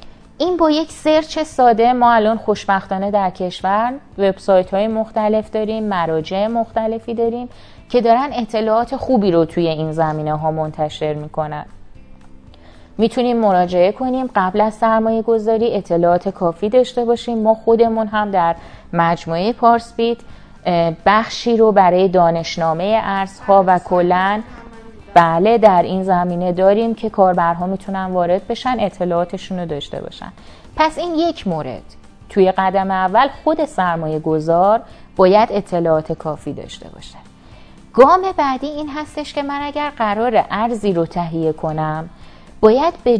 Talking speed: 135 wpm